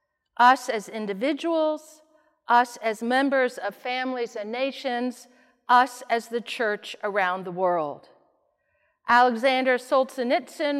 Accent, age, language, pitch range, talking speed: American, 50-69, English, 220-285 Hz, 105 wpm